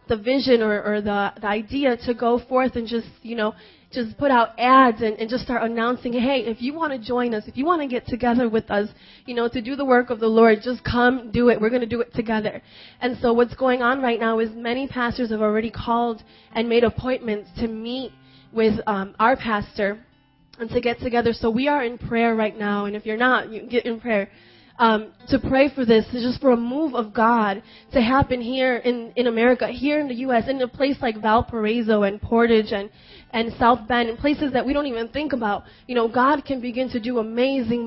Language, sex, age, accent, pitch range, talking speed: English, female, 20-39, American, 225-260 Hz, 230 wpm